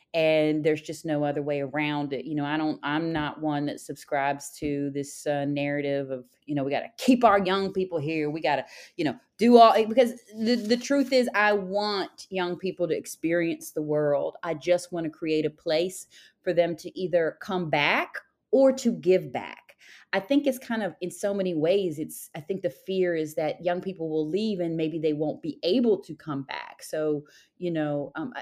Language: English